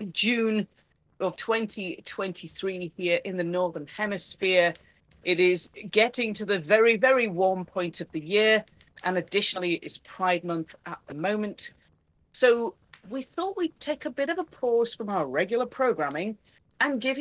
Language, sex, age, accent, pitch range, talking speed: English, female, 40-59, British, 170-225 Hz, 155 wpm